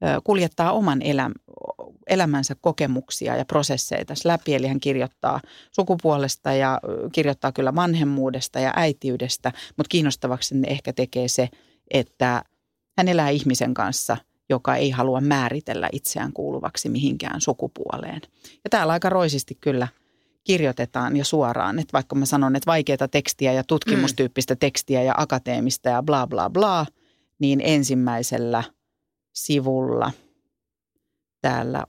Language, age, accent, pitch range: Finnish, 40-59, native, 130-160 Hz